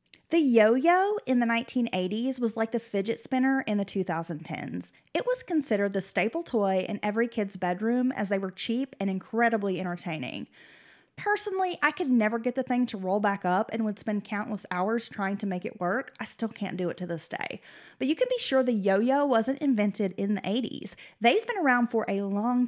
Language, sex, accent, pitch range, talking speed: English, female, American, 200-260 Hz, 205 wpm